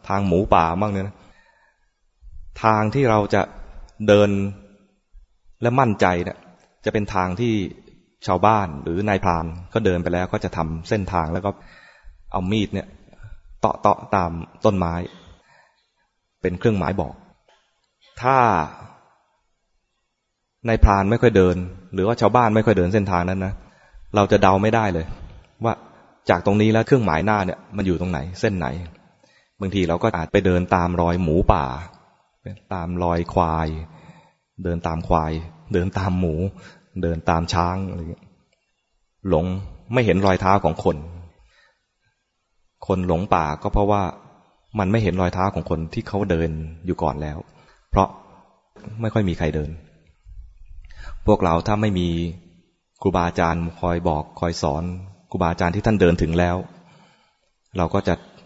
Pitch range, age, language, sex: 85-100 Hz, 20-39, English, male